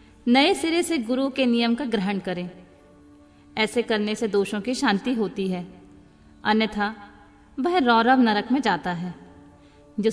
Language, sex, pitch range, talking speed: Hindi, female, 185-245 Hz, 150 wpm